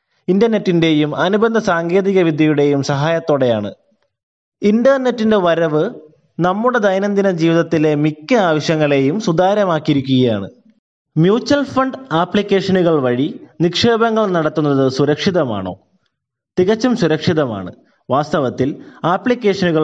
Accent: native